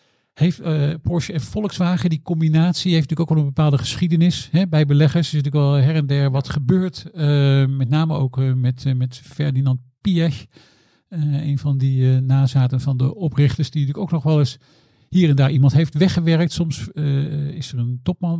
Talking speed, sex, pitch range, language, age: 205 wpm, male, 130-165 Hz, Dutch, 50-69